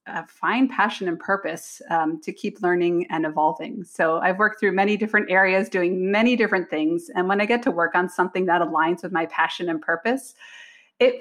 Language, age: English, 30-49